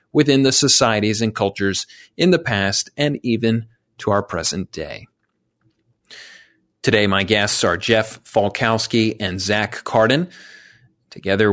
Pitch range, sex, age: 105-125 Hz, male, 40-59